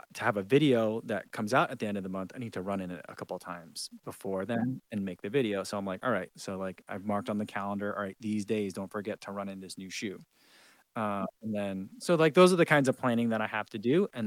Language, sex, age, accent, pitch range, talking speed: English, male, 20-39, American, 105-140 Hz, 295 wpm